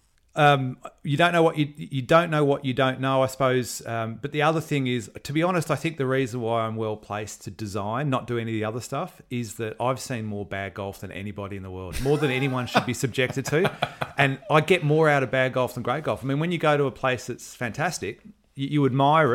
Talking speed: 260 wpm